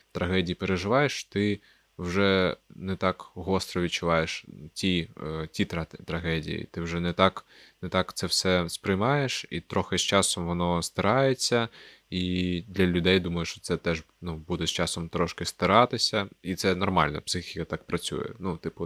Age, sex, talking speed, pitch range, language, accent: 20-39, male, 155 wpm, 85-100 Hz, Ukrainian, native